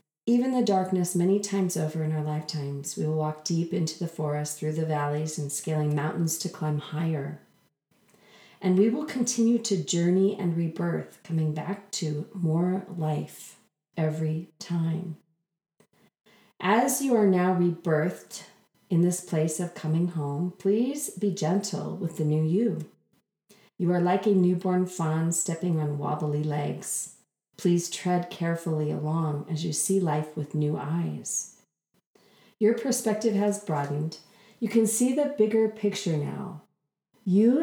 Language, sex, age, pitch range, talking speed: English, female, 40-59, 155-195 Hz, 145 wpm